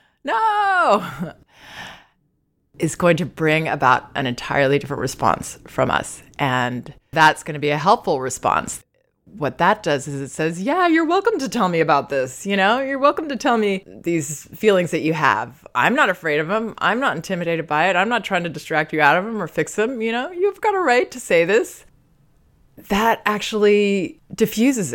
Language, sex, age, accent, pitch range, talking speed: English, female, 20-39, American, 150-210 Hz, 190 wpm